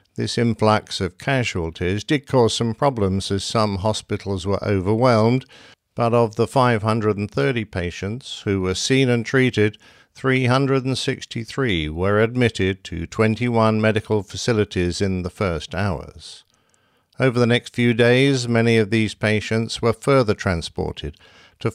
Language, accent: English, British